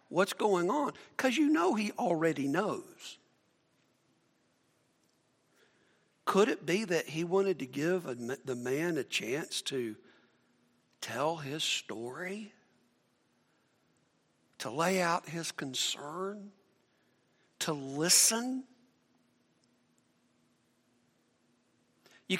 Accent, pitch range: American, 160-200 Hz